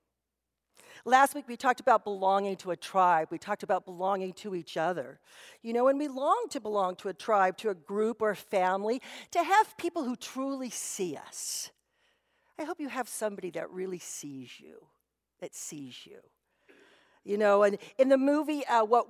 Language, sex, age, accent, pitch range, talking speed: English, female, 50-69, American, 190-255 Hz, 185 wpm